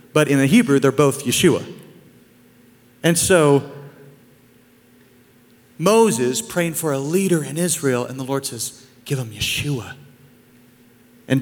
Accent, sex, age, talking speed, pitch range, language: American, male, 40-59, 125 wpm, 120-150 Hz, English